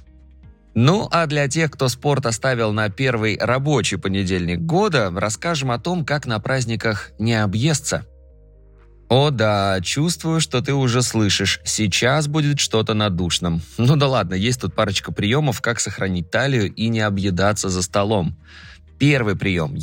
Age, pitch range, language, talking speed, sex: 20-39, 95-130 Hz, Russian, 145 wpm, male